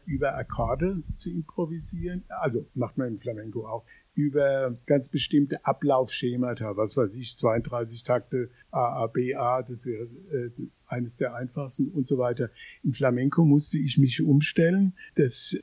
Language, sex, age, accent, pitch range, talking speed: German, male, 60-79, German, 130-165 Hz, 150 wpm